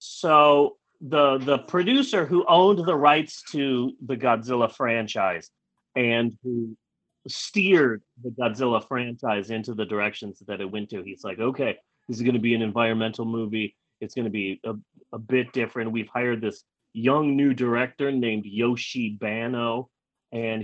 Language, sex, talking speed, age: English, male, 150 wpm, 30-49